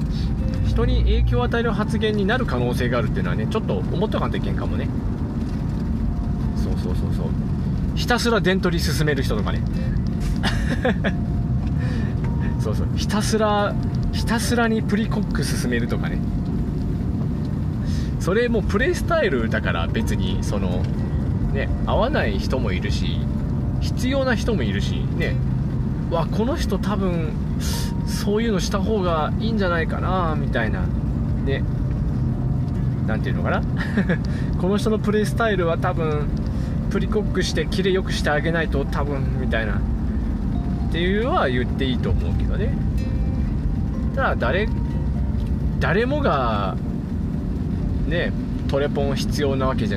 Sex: male